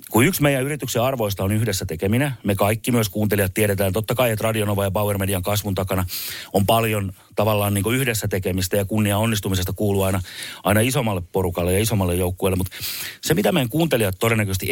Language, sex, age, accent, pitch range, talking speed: Finnish, male, 30-49, native, 95-120 Hz, 190 wpm